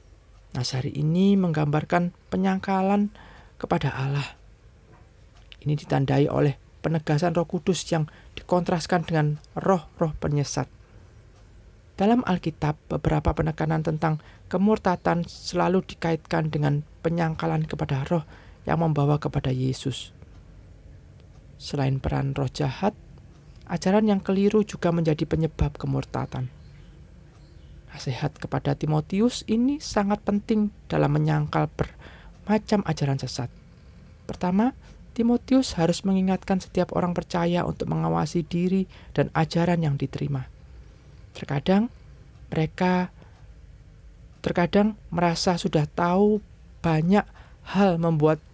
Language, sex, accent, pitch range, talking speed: Indonesian, male, native, 135-180 Hz, 100 wpm